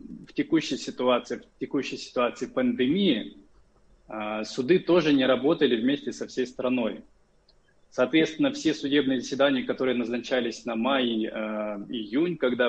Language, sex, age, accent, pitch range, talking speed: Russian, male, 20-39, native, 120-155 Hz, 110 wpm